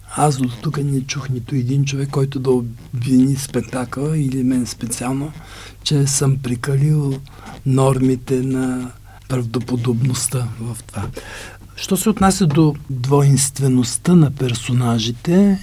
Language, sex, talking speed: Bulgarian, male, 115 wpm